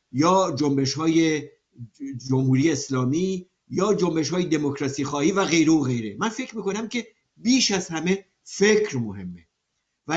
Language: Persian